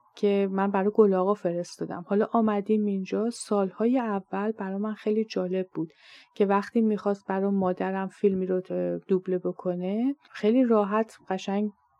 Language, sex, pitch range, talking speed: Persian, female, 185-220 Hz, 135 wpm